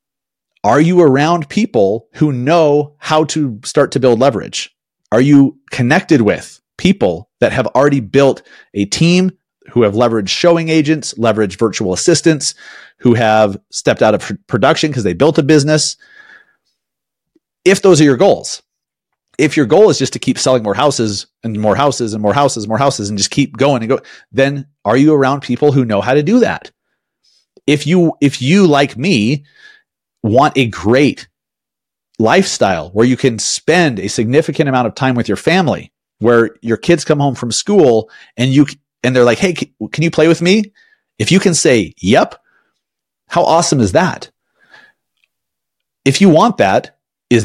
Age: 30-49